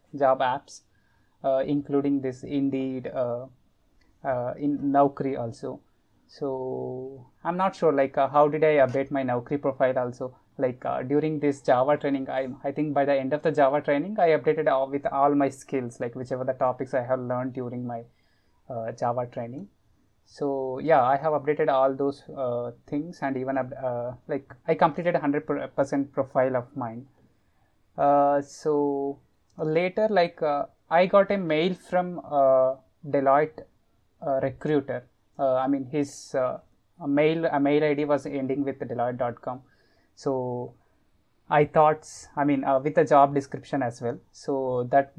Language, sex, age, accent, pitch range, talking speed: English, male, 20-39, Indian, 125-145 Hz, 165 wpm